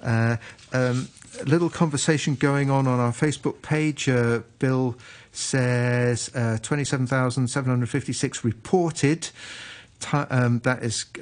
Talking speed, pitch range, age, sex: 145 wpm, 115-135 Hz, 40-59, male